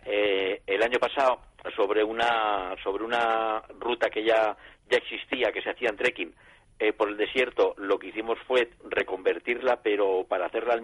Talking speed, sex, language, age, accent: 170 wpm, male, Spanish, 40-59, Spanish